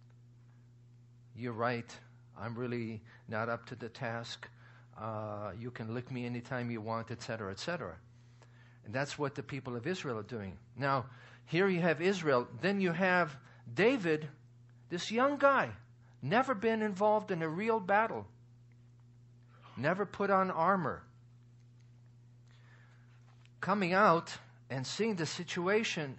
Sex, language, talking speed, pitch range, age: male, English, 130 wpm, 120-160 Hz, 50-69